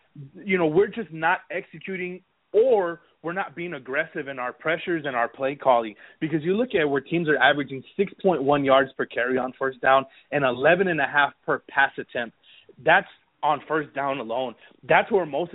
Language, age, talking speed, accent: English, 20-39, 180 wpm, American